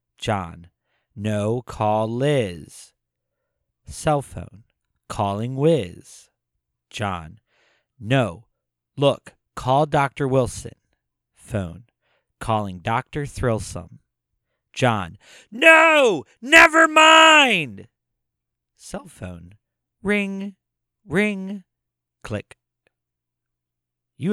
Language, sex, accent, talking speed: English, male, American, 70 wpm